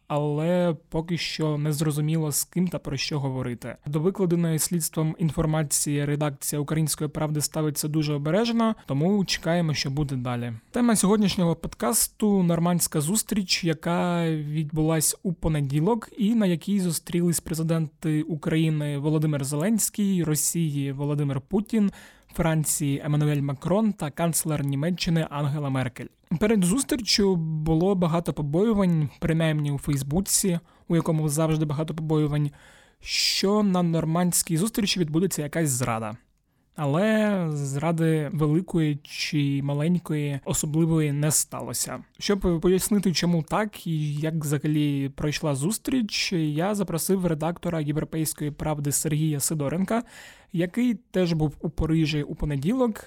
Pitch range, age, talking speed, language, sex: 150-180 Hz, 20-39, 120 wpm, Ukrainian, male